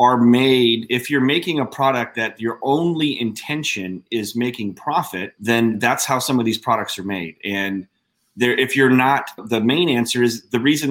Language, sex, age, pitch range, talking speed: English, male, 30-49, 115-140 Hz, 180 wpm